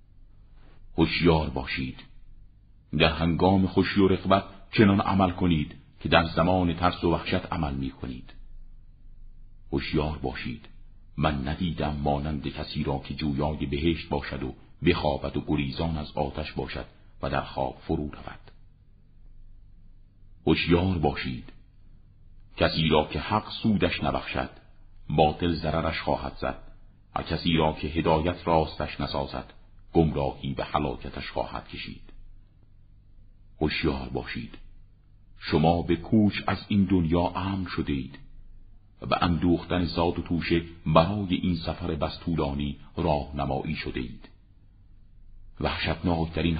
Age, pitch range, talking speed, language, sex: 50-69, 75-100 Hz, 115 wpm, Persian, male